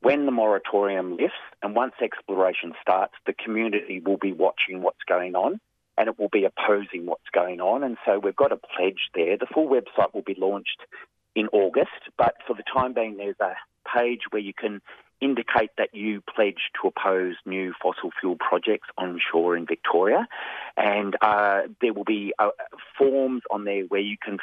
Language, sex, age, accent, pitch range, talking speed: English, male, 30-49, Australian, 90-105 Hz, 185 wpm